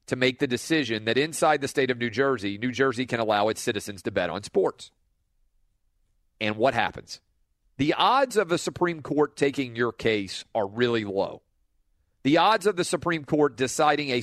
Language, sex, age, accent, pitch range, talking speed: English, male, 40-59, American, 105-150 Hz, 185 wpm